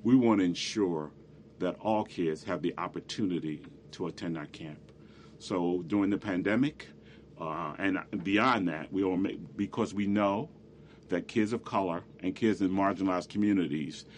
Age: 40-59